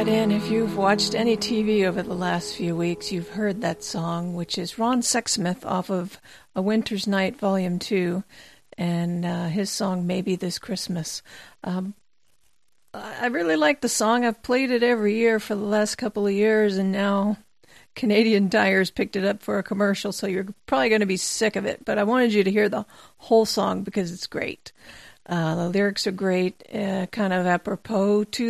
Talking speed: 190 wpm